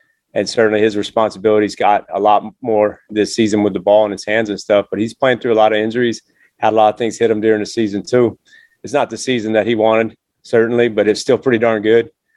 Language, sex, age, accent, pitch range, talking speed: English, male, 30-49, American, 105-115 Hz, 245 wpm